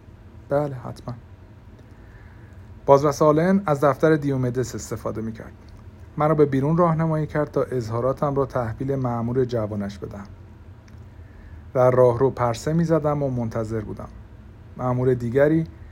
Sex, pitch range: male, 105-140 Hz